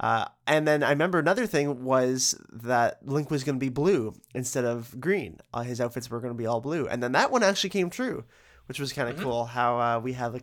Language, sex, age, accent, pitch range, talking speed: English, male, 20-39, American, 120-145 Hz, 255 wpm